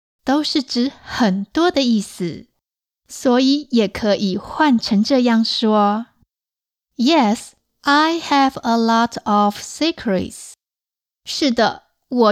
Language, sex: Chinese, female